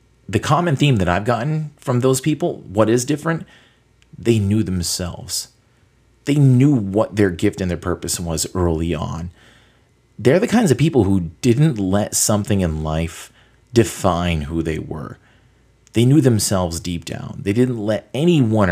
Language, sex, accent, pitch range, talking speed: English, male, American, 85-120 Hz, 160 wpm